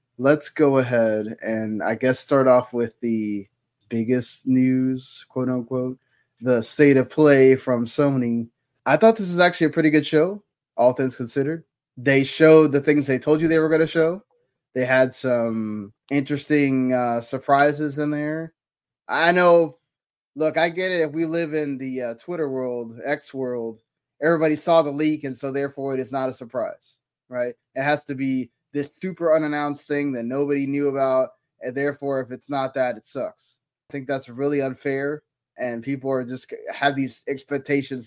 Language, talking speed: English, 180 wpm